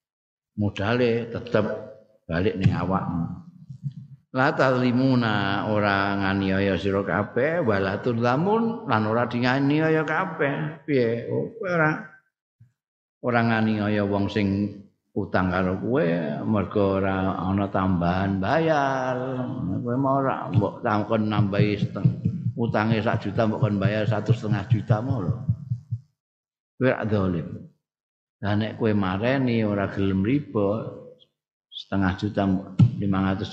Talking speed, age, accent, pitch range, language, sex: 75 wpm, 50-69, native, 100-135 Hz, Indonesian, male